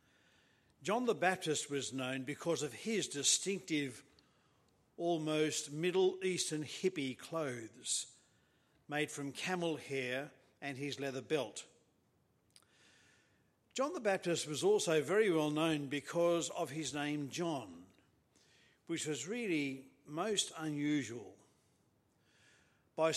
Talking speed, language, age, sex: 105 wpm, English, 50-69, male